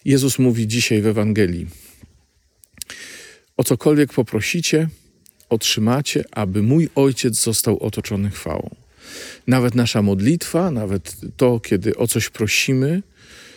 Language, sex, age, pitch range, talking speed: Polish, male, 40-59, 105-135 Hz, 105 wpm